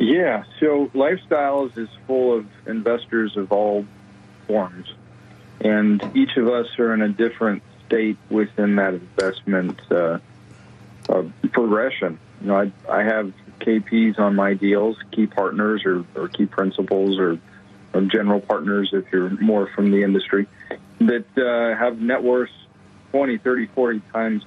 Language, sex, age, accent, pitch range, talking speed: English, male, 40-59, American, 100-120 Hz, 140 wpm